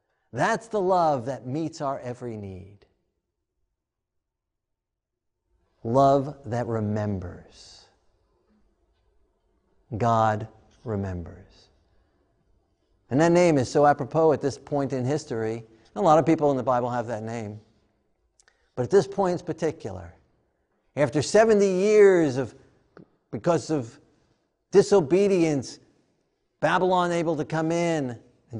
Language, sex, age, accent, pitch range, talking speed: English, male, 50-69, American, 110-155 Hz, 110 wpm